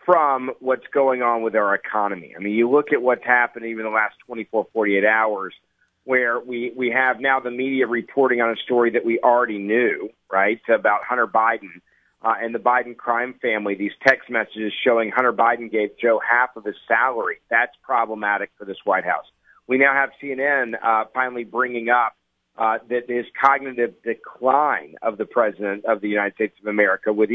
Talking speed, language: 190 wpm, English